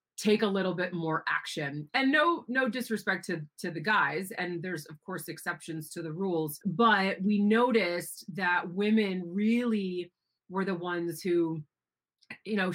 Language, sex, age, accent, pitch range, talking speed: English, female, 30-49, American, 165-210 Hz, 160 wpm